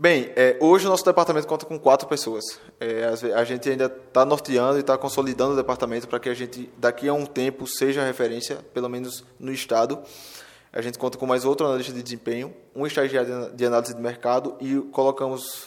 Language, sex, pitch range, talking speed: Portuguese, male, 120-135 Hz, 200 wpm